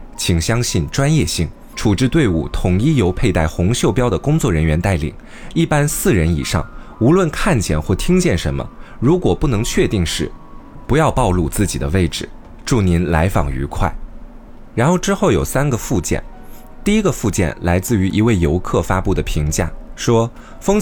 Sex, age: male, 20-39